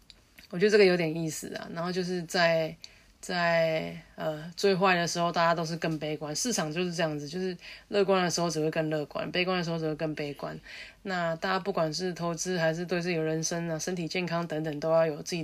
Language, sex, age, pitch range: Chinese, female, 20-39, 155-180 Hz